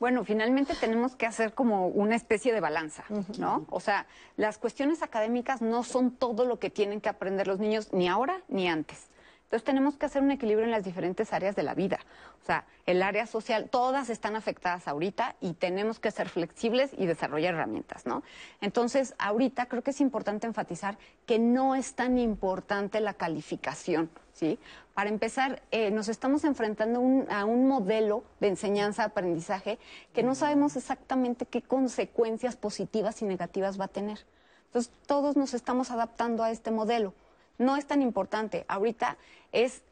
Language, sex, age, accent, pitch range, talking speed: Spanish, female, 30-49, Mexican, 205-255 Hz, 170 wpm